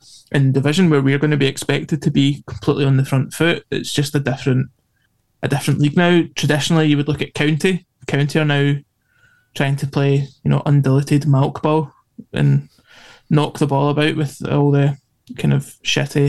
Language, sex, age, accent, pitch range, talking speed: English, male, 20-39, British, 140-160 Hz, 190 wpm